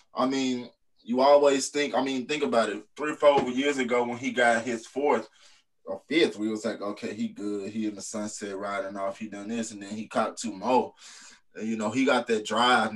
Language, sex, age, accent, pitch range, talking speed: English, male, 20-39, American, 110-130 Hz, 225 wpm